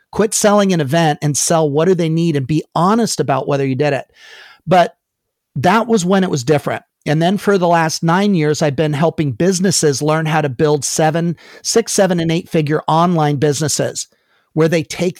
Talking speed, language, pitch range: 200 wpm, English, 150-185 Hz